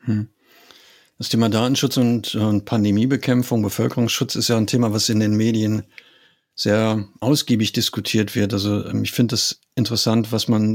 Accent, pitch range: German, 105-120 Hz